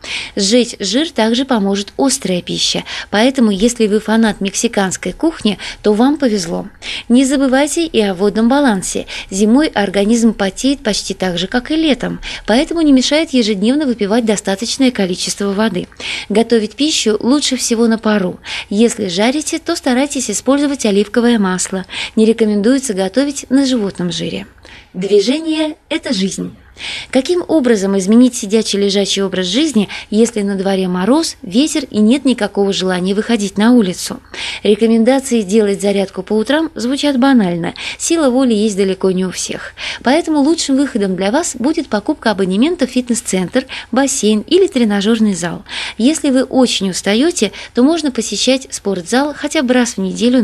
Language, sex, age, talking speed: Russian, female, 20-39, 145 wpm